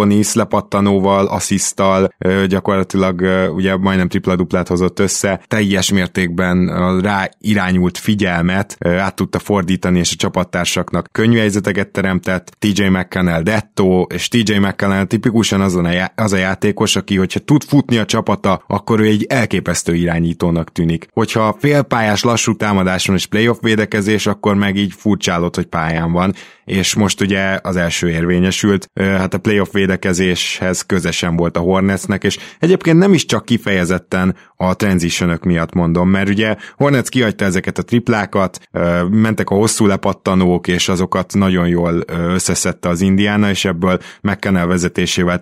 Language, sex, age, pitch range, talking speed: Hungarian, male, 20-39, 90-105 Hz, 140 wpm